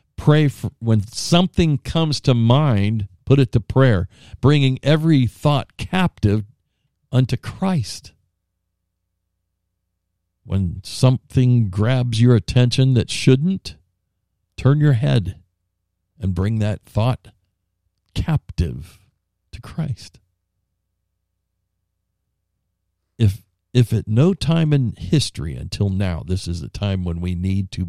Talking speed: 110 wpm